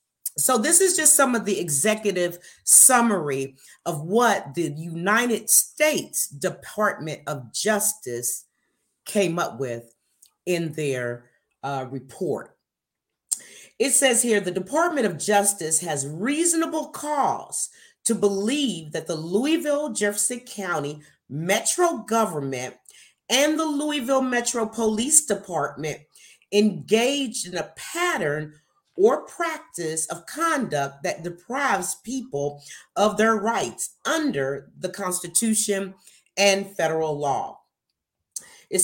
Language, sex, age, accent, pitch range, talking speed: English, female, 40-59, American, 170-245 Hz, 110 wpm